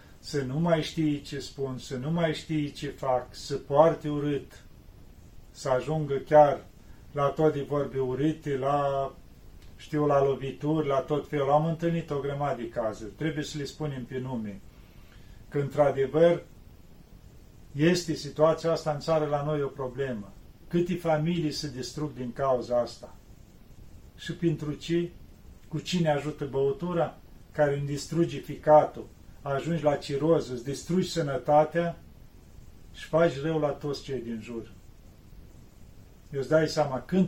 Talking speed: 145 wpm